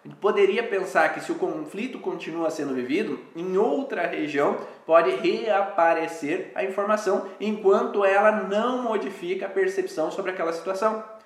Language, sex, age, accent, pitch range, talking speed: Portuguese, male, 20-39, Brazilian, 165-215 Hz, 135 wpm